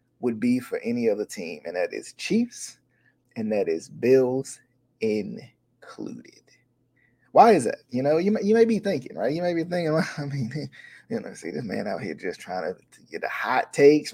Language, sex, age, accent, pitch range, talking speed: English, male, 20-39, American, 130-215 Hz, 205 wpm